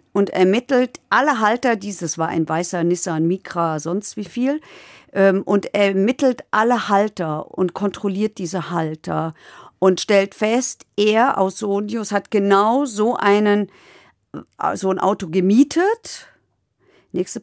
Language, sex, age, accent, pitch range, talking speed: German, female, 50-69, German, 185-235 Hz, 125 wpm